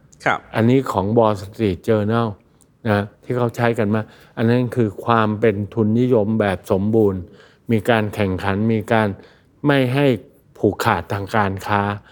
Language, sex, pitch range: Thai, male, 105-120 Hz